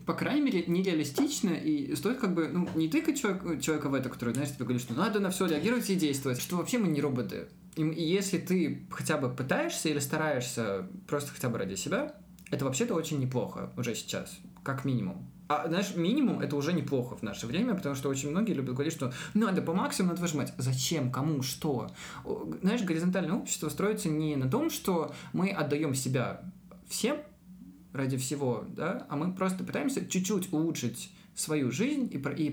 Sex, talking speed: male, 185 wpm